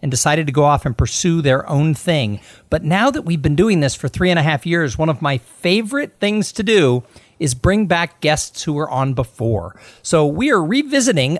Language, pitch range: English, 125-190 Hz